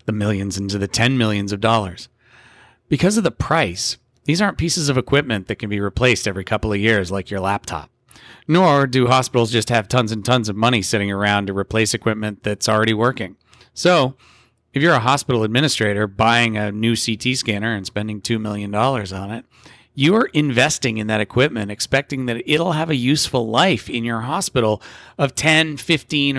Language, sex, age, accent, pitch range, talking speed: English, male, 30-49, American, 105-130 Hz, 185 wpm